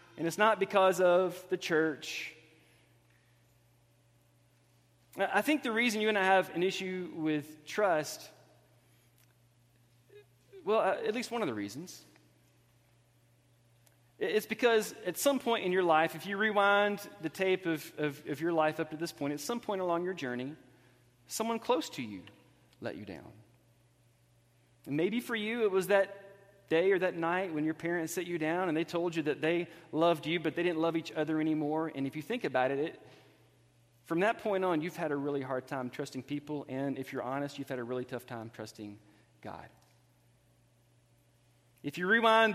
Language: English